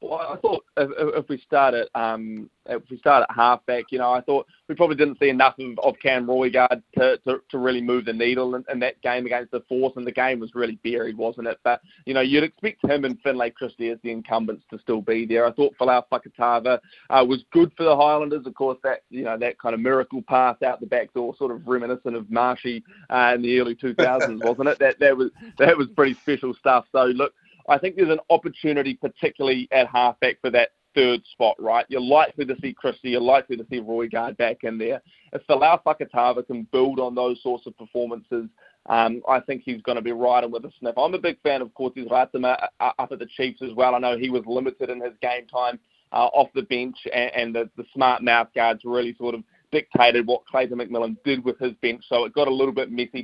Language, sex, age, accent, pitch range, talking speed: English, male, 20-39, Australian, 120-135 Hz, 235 wpm